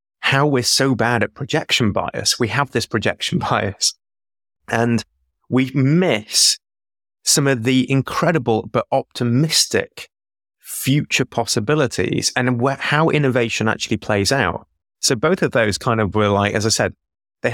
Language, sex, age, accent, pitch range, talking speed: English, male, 20-39, British, 100-125 Hz, 140 wpm